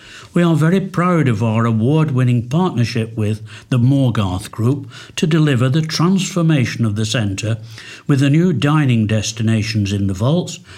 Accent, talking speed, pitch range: British, 150 wpm, 110-155 Hz